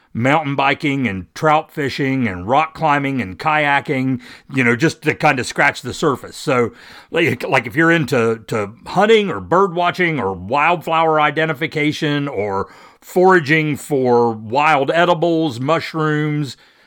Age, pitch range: 50-69, 115-155 Hz